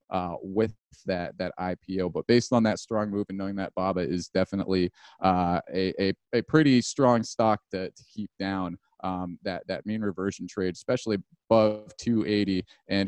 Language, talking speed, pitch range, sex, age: English, 175 wpm, 95-120 Hz, male, 30-49